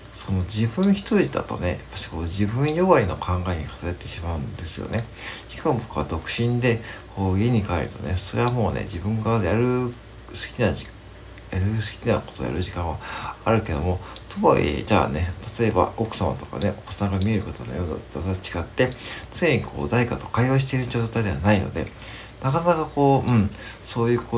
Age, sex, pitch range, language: 60-79, male, 95-120 Hz, Japanese